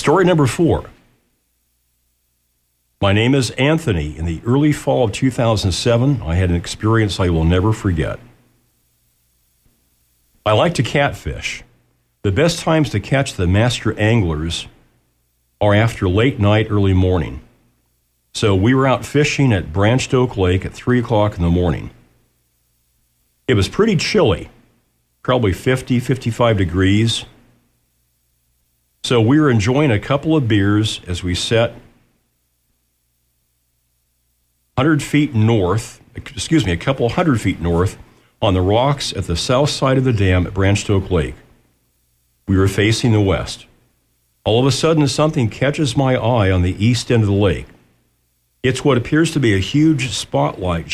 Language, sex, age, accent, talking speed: English, male, 50-69, American, 145 wpm